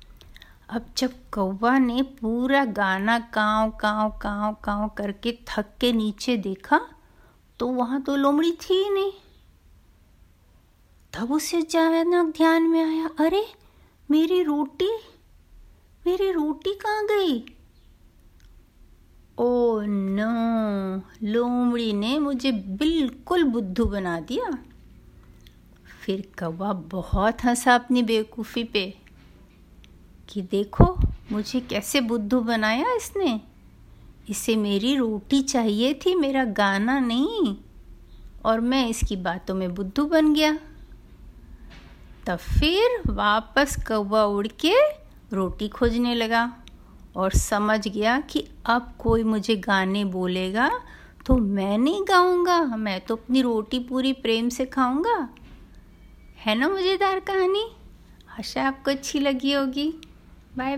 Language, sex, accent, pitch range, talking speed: Hindi, female, native, 205-285 Hz, 110 wpm